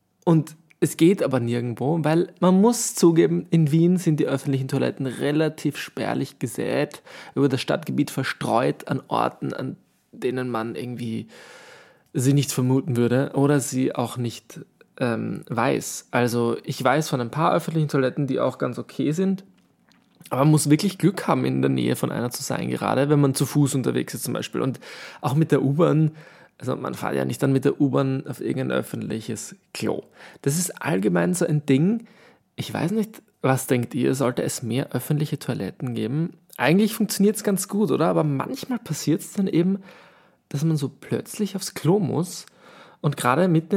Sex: male